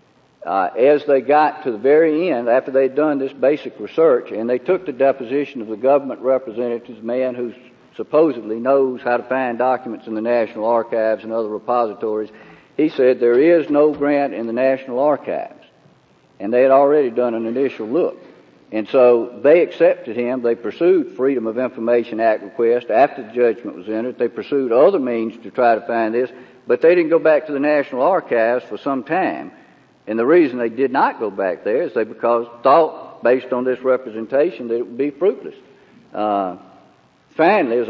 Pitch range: 115-140 Hz